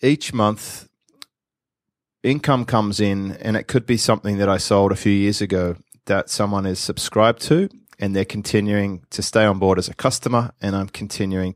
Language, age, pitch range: English, 30-49, 100-125 Hz